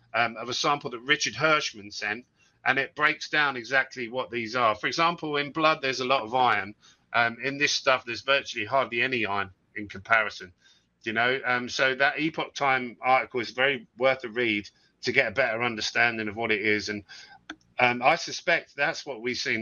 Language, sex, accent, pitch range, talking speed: English, male, British, 110-145 Hz, 200 wpm